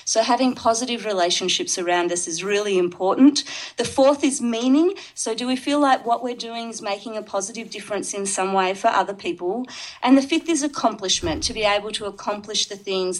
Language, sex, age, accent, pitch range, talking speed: English, female, 40-59, Australian, 195-255 Hz, 200 wpm